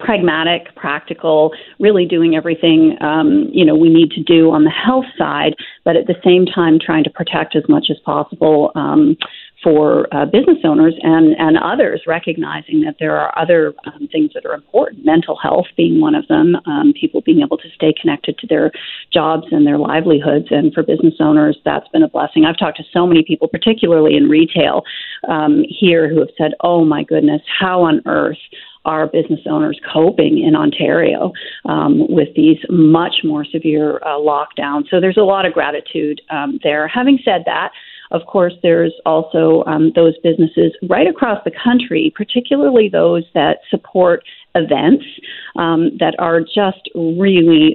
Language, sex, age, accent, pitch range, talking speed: English, female, 40-59, American, 160-255 Hz, 175 wpm